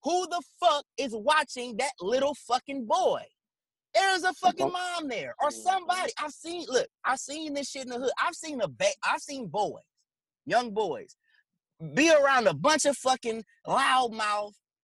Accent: American